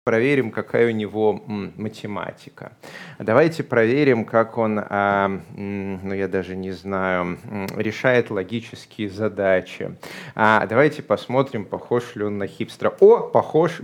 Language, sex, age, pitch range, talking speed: Russian, male, 30-49, 105-140 Hz, 115 wpm